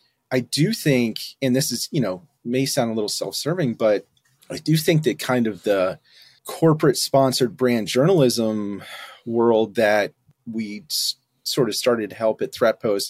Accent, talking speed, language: American, 160 wpm, English